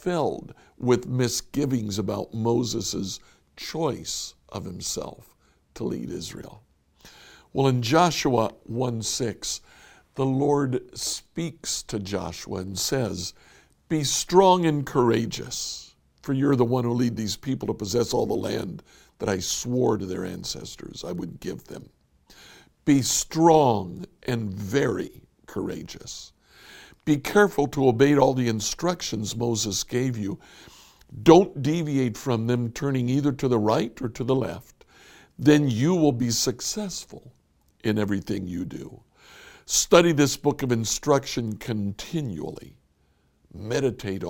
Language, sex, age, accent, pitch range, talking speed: English, male, 60-79, American, 110-145 Hz, 125 wpm